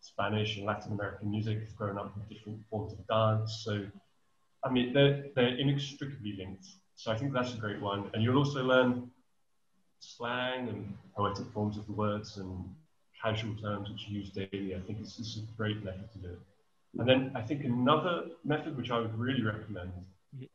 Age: 30-49